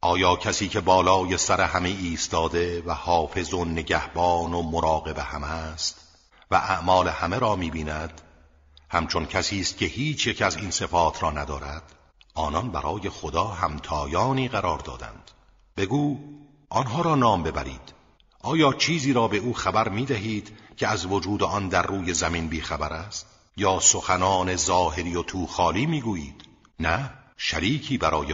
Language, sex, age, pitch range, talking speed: Persian, male, 50-69, 80-105 Hz, 140 wpm